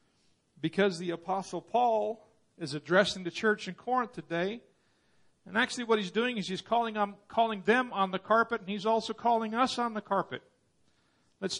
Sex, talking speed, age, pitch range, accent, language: male, 170 wpm, 50-69, 150-195 Hz, American, English